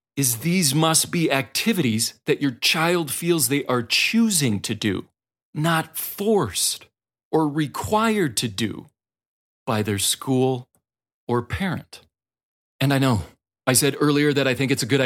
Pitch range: 125-155 Hz